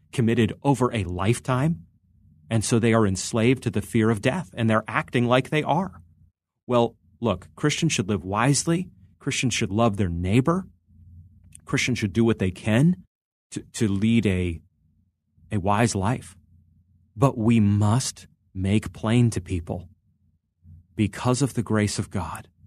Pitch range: 90-115 Hz